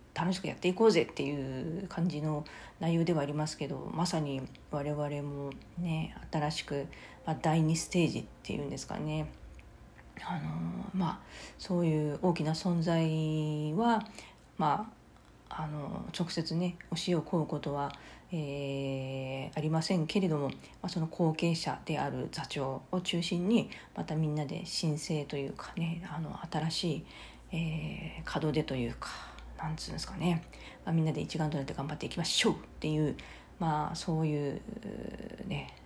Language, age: Japanese, 40-59